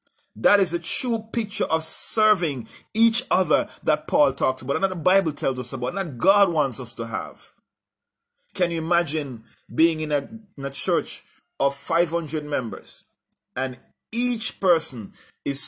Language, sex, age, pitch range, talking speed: English, male, 30-49, 145-210 Hz, 160 wpm